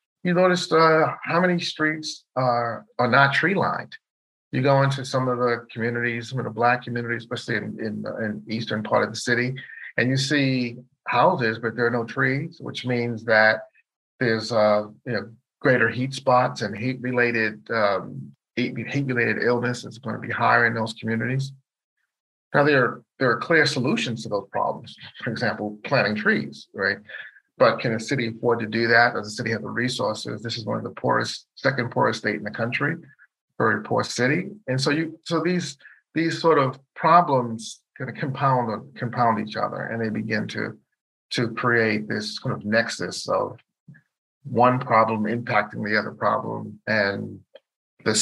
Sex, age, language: male, 40-59, English